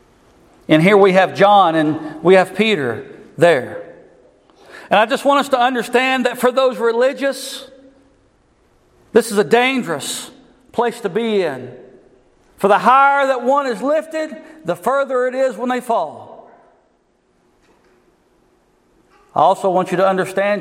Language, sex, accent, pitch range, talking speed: English, male, American, 200-270 Hz, 145 wpm